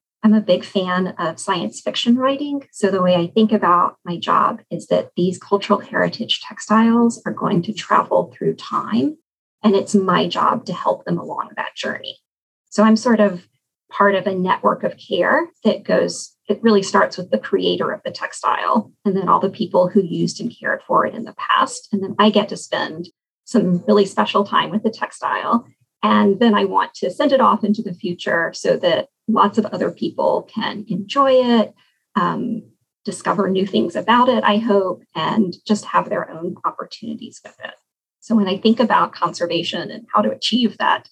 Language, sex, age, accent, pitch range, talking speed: English, female, 30-49, American, 185-235 Hz, 195 wpm